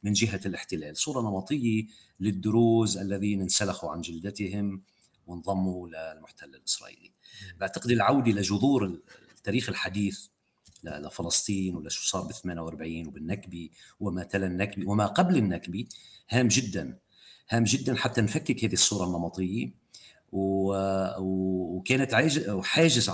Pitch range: 95-115 Hz